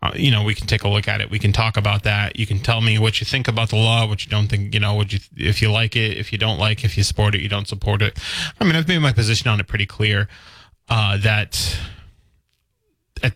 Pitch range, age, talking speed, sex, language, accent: 100-120 Hz, 20-39, 280 wpm, male, English, American